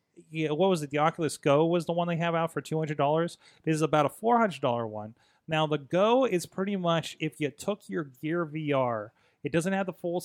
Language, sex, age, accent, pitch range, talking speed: English, male, 30-49, American, 140-170 Hz, 245 wpm